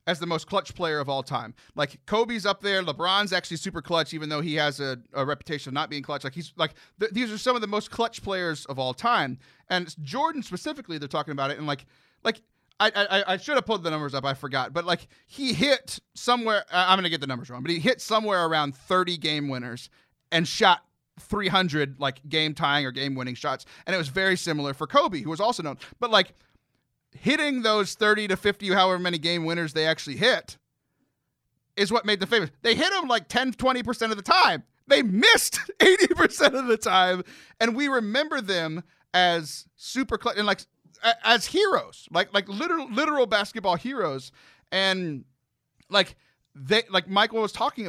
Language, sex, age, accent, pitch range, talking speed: English, male, 30-49, American, 145-220 Hz, 205 wpm